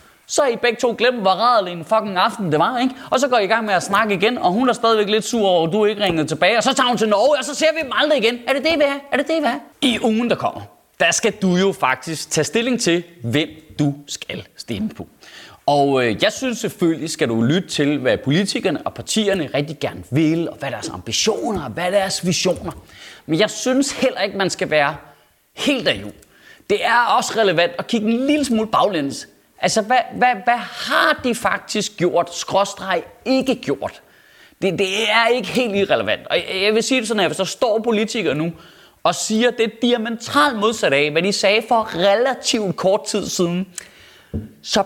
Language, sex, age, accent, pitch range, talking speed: Danish, male, 20-39, native, 165-240 Hz, 215 wpm